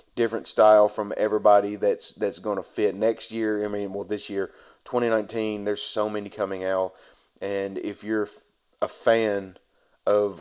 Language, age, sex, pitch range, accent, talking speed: English, 30-49, male, 95-105 Hz, American, 160 wpm